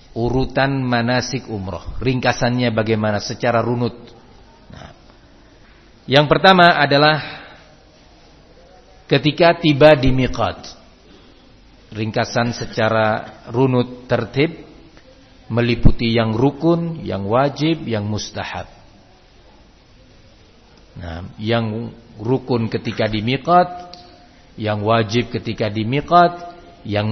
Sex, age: male, 50-69